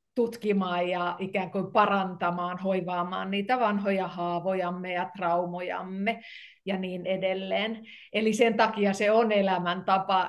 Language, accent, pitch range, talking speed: Finnish, native, 185-210 Hz, 115 wpm